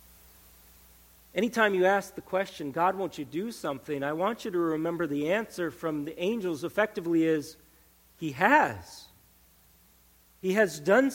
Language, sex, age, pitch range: English, male, 40-59, 140-190 Hz